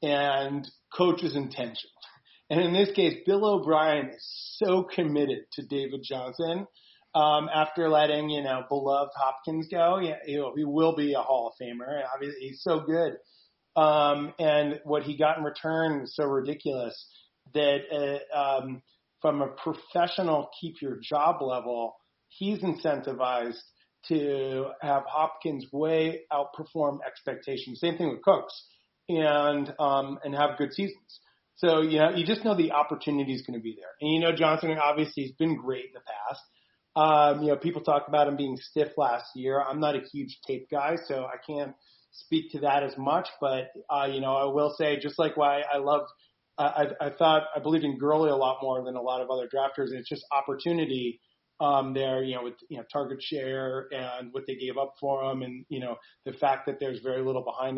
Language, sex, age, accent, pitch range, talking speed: English, male, 40-59, American, 135-155 Hz, 190 wpm